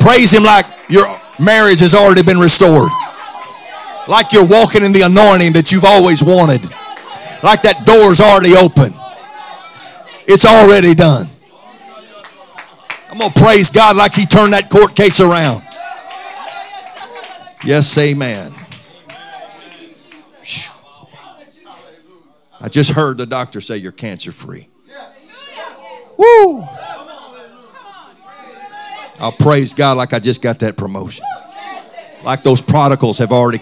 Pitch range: 130-215 Hz